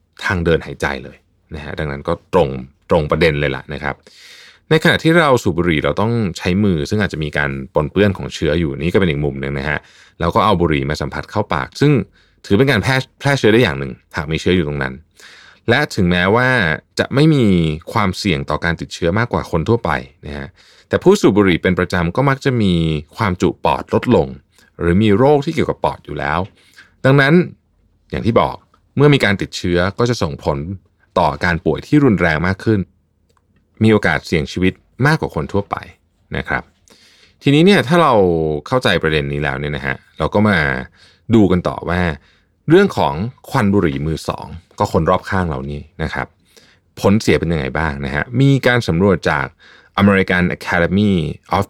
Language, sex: Thai, male